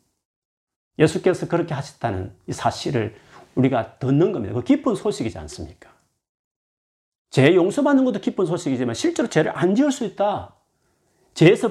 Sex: male